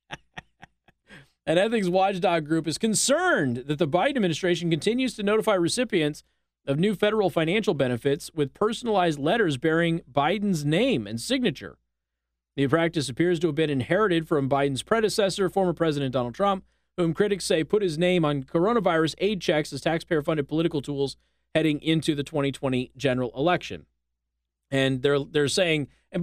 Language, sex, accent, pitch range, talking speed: English, male, American, 130-185 Hz, 155 wpm